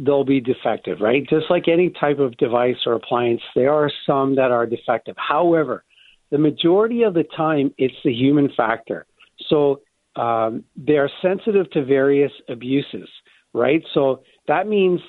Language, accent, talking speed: English, American, 155 wpm